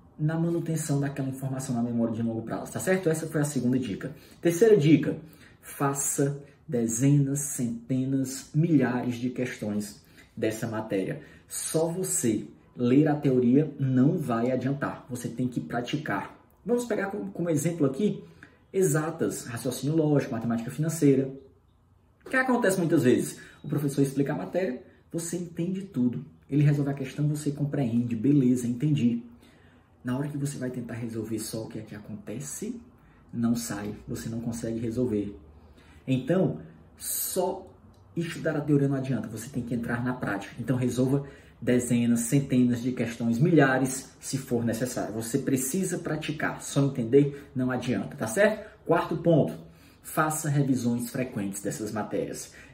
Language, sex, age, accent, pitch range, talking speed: Portuguese, male, 20-39, Brazilian, 115-145 Hz, 145 wpm